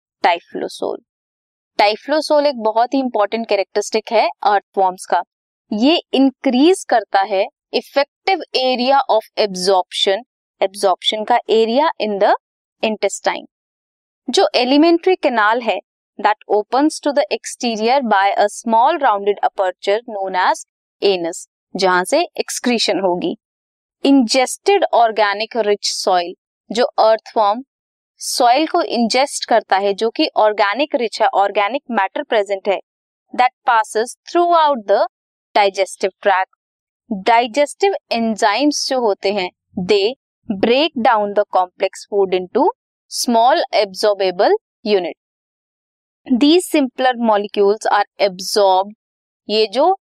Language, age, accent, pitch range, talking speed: Hindi, 20-39, native, 200-270 Hz, 110 wpm